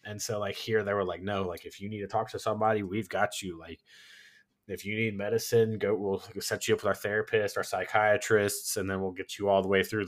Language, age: English, 20-39